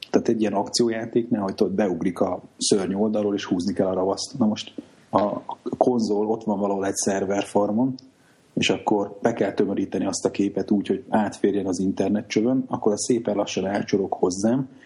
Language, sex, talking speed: Hungarian, male, 175 wpm